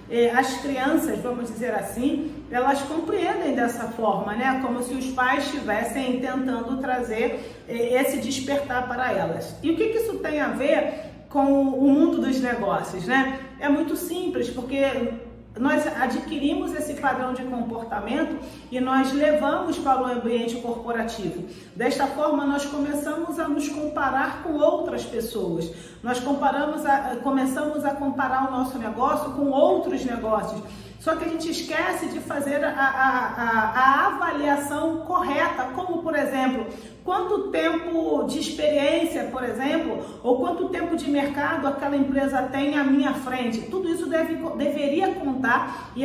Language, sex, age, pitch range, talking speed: Portuguese, female, 40-59, 255-305 Hz, 145 wpm